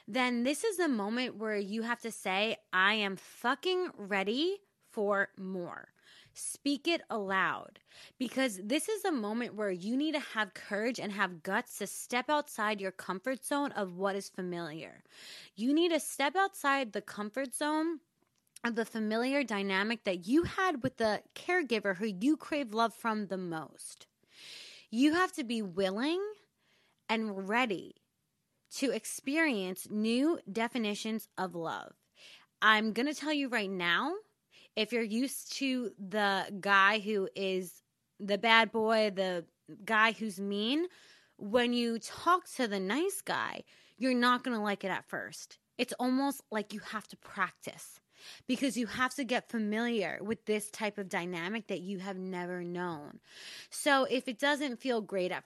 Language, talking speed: English, 160 wpm